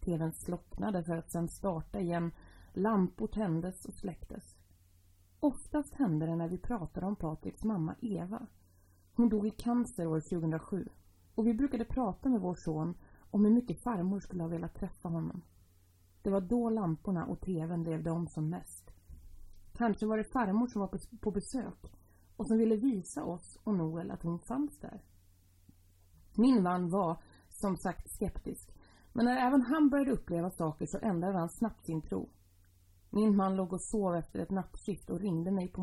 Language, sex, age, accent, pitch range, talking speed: Swedish, female, 30-49, native, 155-220 Hz, 175 wpm